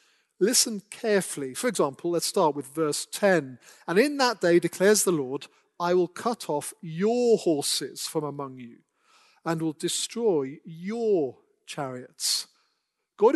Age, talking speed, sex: 40-59, 140 wpm, male